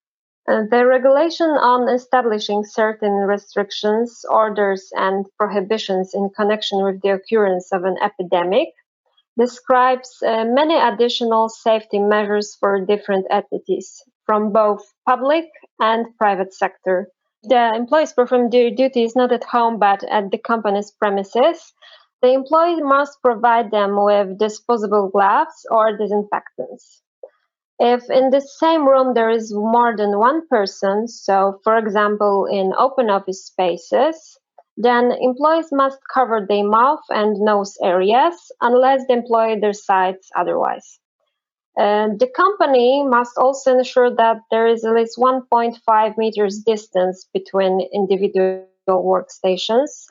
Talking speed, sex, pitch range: 125 wpm, female, 200-250 Hz